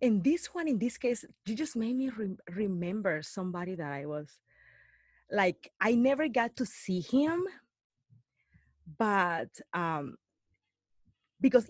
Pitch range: 170-215 Hz